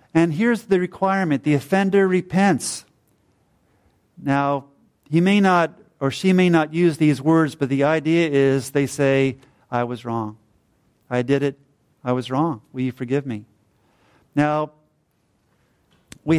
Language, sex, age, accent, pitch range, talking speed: English, male, 50-69, American, 140-175 Hz, 145 wpm